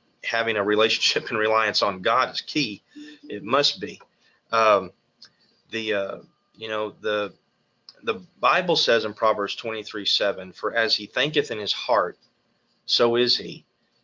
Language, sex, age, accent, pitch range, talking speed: English, male, 30-49, American, 105-130 Hz, 150 wpm